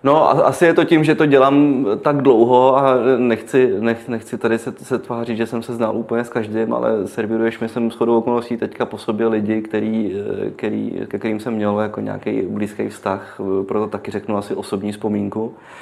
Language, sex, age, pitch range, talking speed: Czech, male, 20-39, 105-120 Hz, 195 wpm